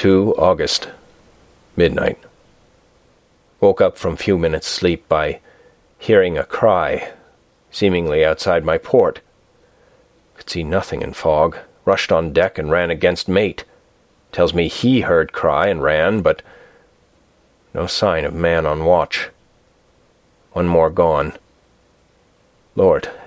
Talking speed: 120 wpm